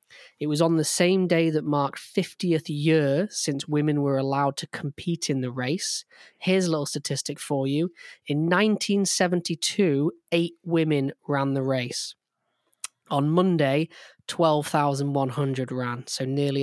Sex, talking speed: male, 135 wpm